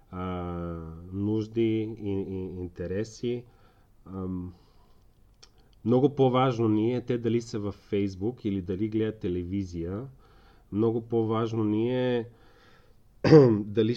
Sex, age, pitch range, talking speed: male, 30-49, 100-115 Hz, 85 wpm